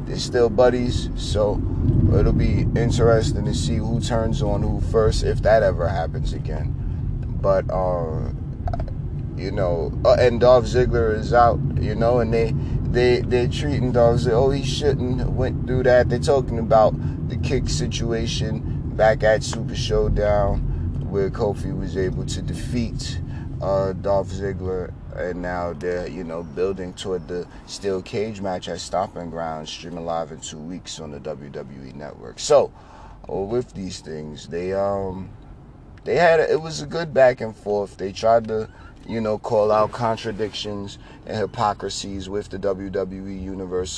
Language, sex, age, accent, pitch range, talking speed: English, male, 30-49, American, 90-115 Hz, 160 wpm